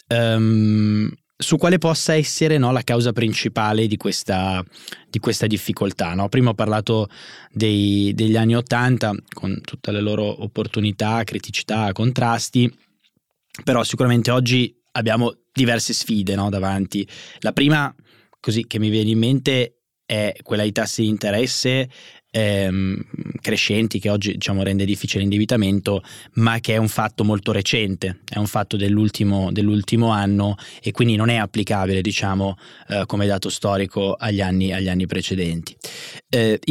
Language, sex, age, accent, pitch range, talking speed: Italian, male, 20-39, native, 100-115 Hz, 140 wpm